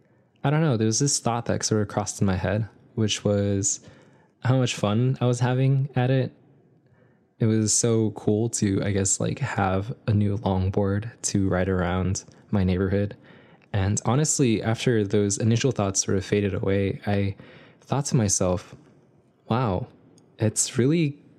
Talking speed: 165 wpm